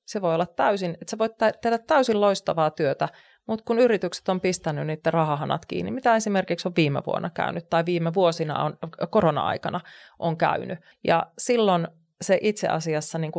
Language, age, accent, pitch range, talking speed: Finnish, 30-49, native, 145-195 Hz, 175 wpm